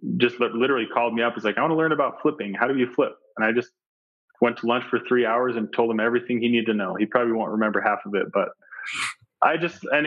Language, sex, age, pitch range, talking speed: English, male, 20-39, 105-125 Hz, 270 wpm